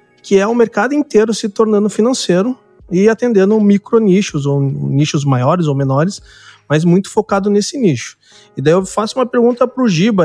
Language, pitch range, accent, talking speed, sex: Portuguese, 160-210 Hz, Brazilian, 180 wpm, male